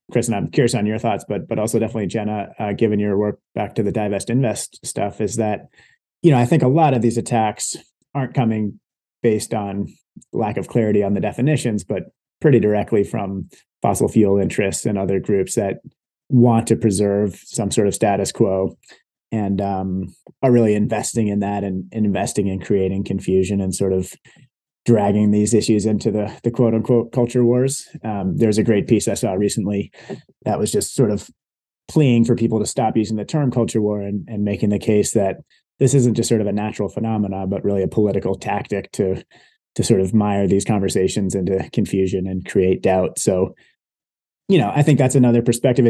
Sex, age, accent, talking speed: male, 30-49, American, 195 wpm